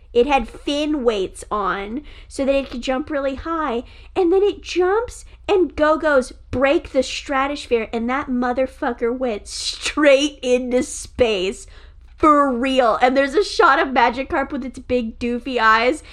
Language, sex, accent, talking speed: English, female, American, 155 wpm